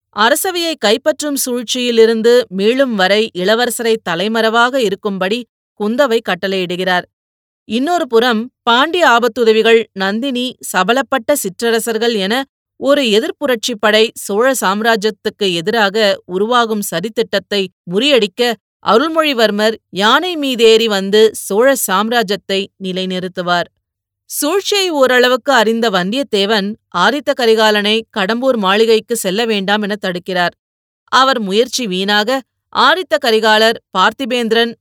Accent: native